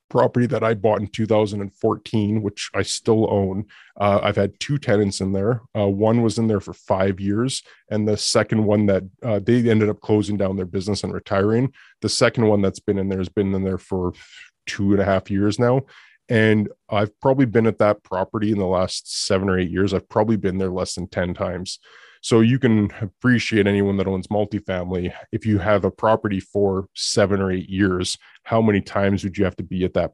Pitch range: 95-110 Hz